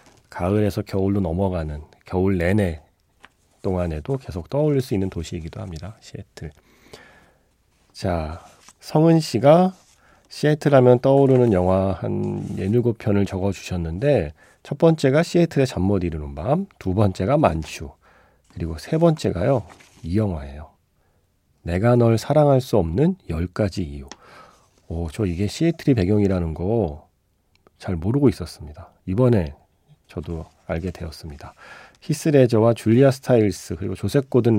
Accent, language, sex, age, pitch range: native, Korean, male, 40-59, 85-125 Hz